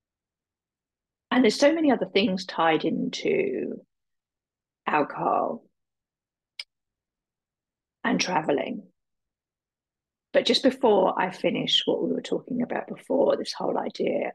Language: English